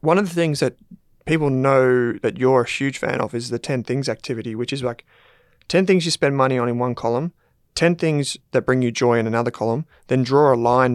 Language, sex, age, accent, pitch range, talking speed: English, male, 30-49, Australian, 120-150 Hz, 235 wpm